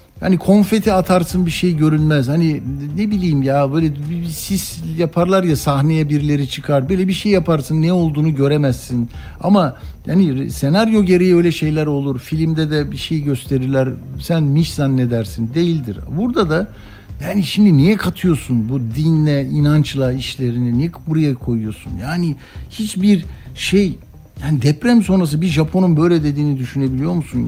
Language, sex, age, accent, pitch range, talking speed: Turkish, male, 60-79, native, 135-175 Hz, 140 wpm